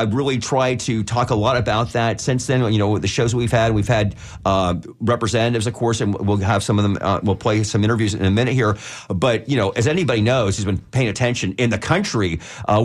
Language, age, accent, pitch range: English, 40-59, American, 105-120 Hz